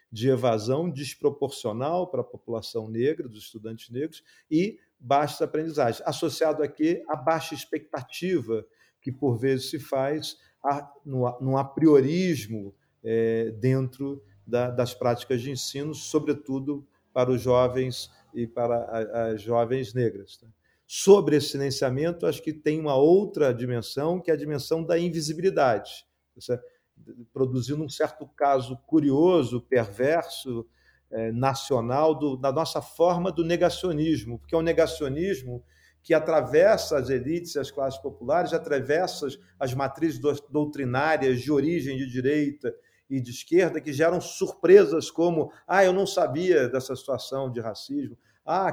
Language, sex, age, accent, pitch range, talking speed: Portuguese, male, 40-59, Brazilian, 125-160 Hz, 135 wpm